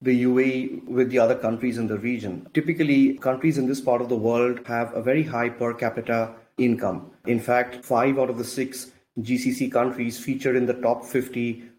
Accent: Indian